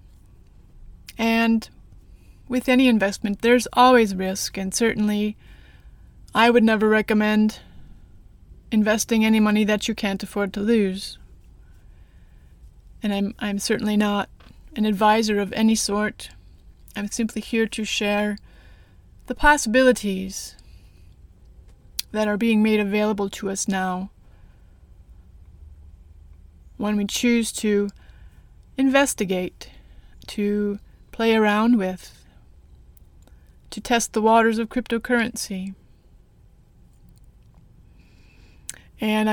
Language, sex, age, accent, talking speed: English, female, 20-39, American, 95 wpm